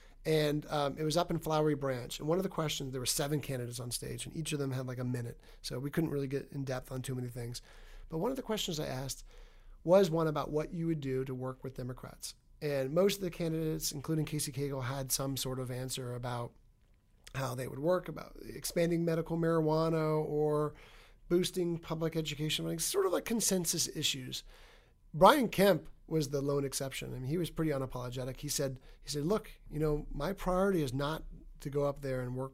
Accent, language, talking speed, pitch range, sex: American, English, 215 wpm, 130-165 Hz, male